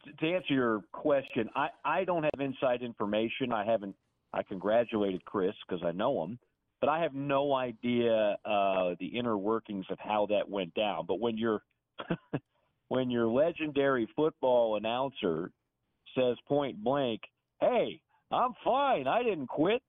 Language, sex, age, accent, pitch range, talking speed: English, male, 50-69, American, 110-140 Hz, 150 wpm